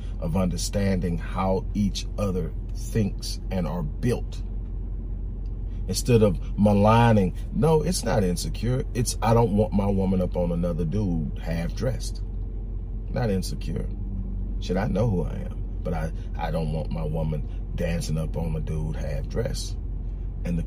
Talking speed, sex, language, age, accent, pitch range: 150 wpm, male, English, 40-59, American, 95-110 Hz